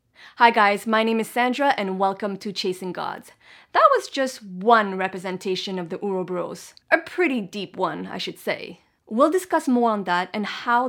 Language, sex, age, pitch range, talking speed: English, female, 20-39, 195-260 Hz, 180 wpm